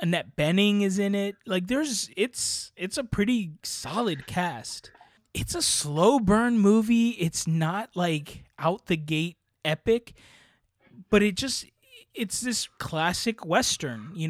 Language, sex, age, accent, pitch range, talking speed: English, male, 20-39, American, 150-195 Hz, 140 wpm